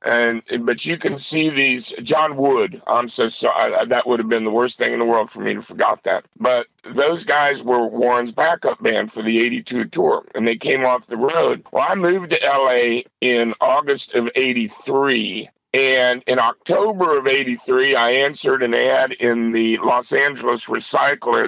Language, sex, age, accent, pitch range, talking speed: English, male, 50-69, American, 120-155 Hz, 185 wpm